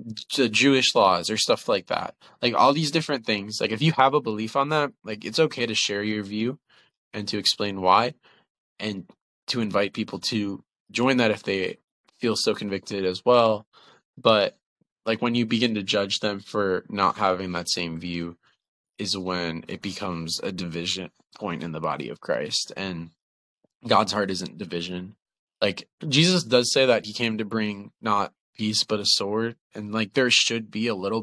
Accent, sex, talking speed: American, male, 185 wpm